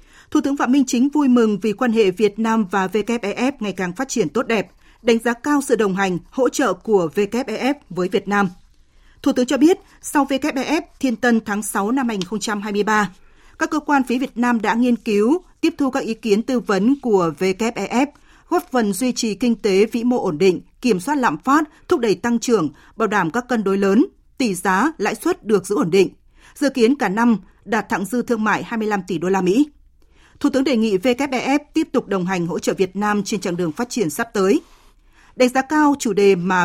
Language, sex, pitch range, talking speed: Vietnamese, female, 200-260 Hz, 220 wpm